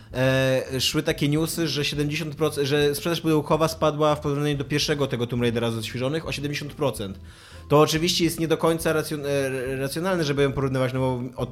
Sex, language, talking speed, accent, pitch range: male, Polish, 175 wpm, native, 125-170 Hz